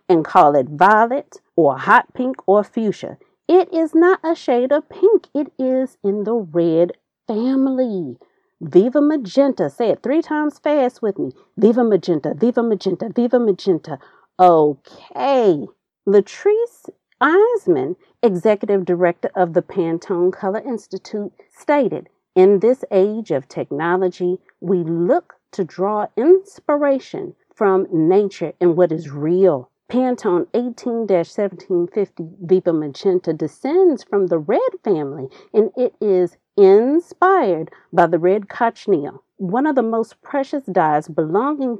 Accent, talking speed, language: American, 125 wpm, English